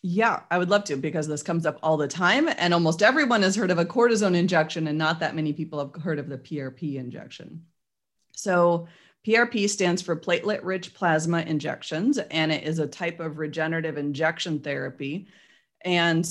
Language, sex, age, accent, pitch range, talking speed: English, female, 30-49, American, 155-185 Hz, 180 wpm